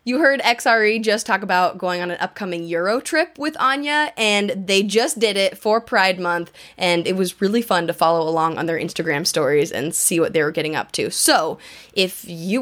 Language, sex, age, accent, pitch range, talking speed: English, female, 10-29, American, 185-240 Hz, 215 wpm